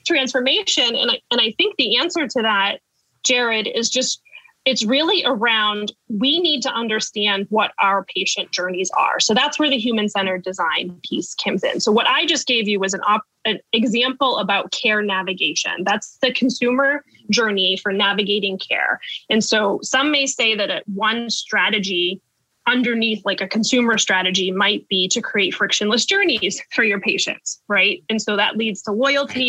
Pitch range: 200-250 Hz